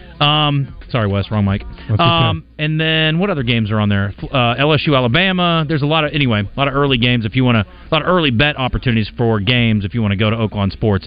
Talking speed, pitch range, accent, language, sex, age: 250 wpm, 115-155 Hz, American, English, male, 30-49